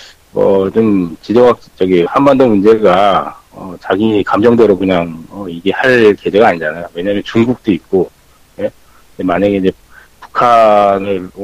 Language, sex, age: Korean, male, 40-59